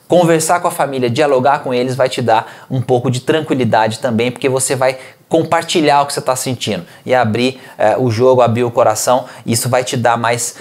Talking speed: 210 wpm